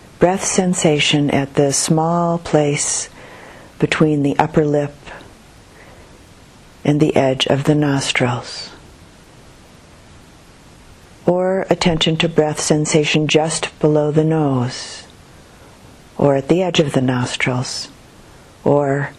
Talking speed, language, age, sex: 105 wpm, English, 50-69, female